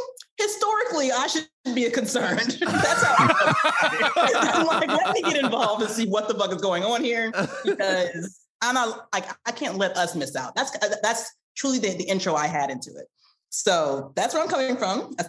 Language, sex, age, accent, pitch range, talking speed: English, female, 30-49, American, 155-220 Hz, 195 wpm